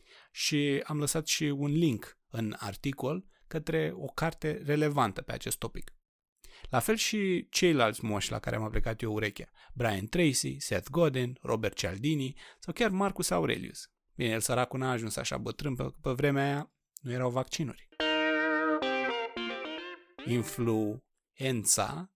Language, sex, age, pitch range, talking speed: Romanian, male, 30-49, 115-155 Hz, 140 wpm